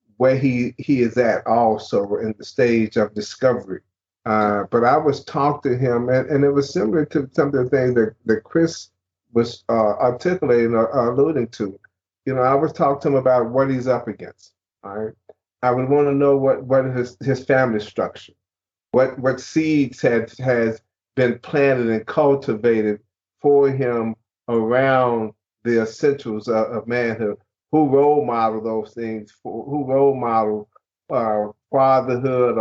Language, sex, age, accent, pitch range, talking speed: English, male, 40-59, American, 110-135 Hz, 165 wpm